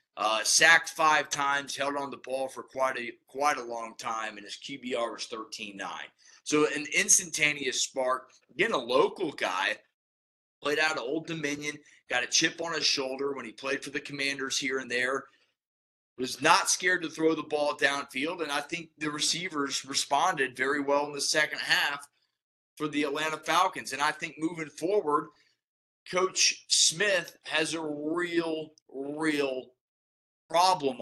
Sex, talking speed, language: male, 165 wpm, English